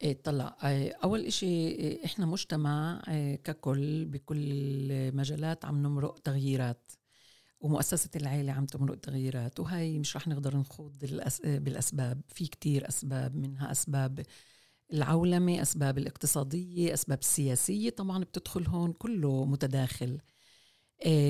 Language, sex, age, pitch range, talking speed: Arabic, female, 50-69, 140-170 Hz, 115 wpm